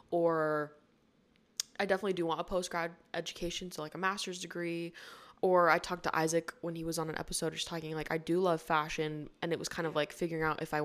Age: 20-39